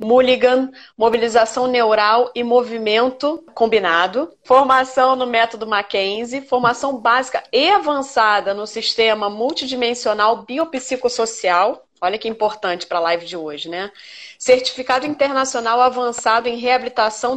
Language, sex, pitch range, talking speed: Portuguese, female, 220-255 Hz, 110 wpm